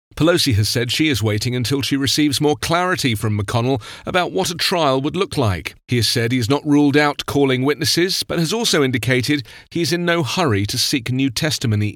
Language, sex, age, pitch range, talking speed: English, male, 40-59, 110-150 Hz, 215 wpm